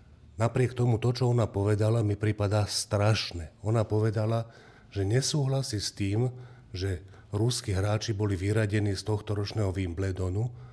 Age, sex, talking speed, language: 40-59, male, 130 wpm, Slovak